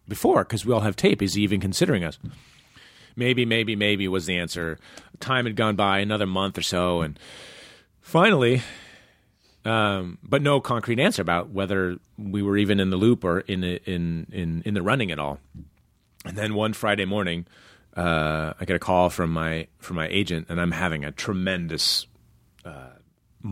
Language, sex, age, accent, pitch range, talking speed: English, male, 30-49, American, 90-115 Hz, 180 wpm